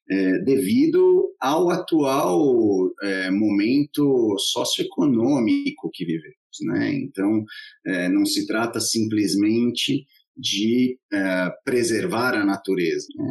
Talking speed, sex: 100 wpm, male